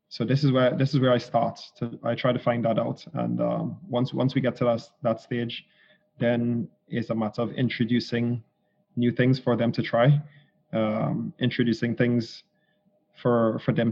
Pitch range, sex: 115-140 Hz, male